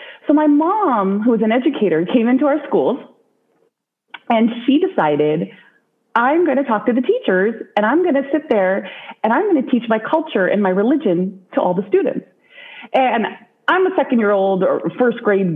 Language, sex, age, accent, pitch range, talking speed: English, female, 30-49, American, 205-295 Hz, 180 wpm